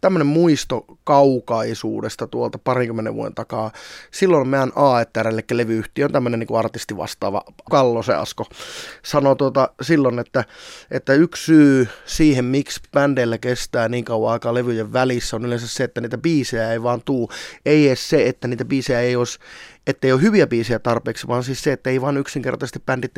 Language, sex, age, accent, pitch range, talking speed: Finnish, male, 20-39, native, 120-140 Hz, 165 wpm